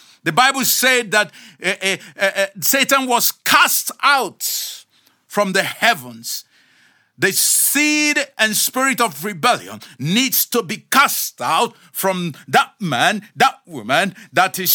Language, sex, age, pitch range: English, male, 50-69, 190-245 Hz